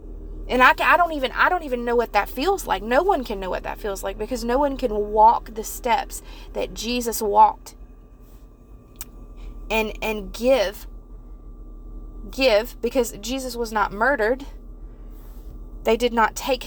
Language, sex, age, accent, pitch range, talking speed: English, female, 30-49, American, 215-260 Hz, 160 wpm